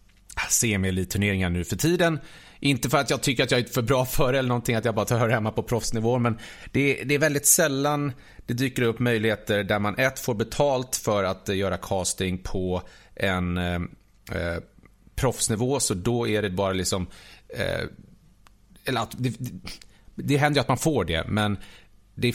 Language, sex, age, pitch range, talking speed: English, male, 30-49, 100-125 Hz, 190 wpm